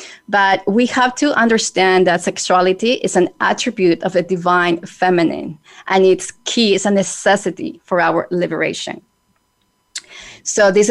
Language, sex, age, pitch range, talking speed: English, female, 20-39, 180-205 Hz, 140 wpm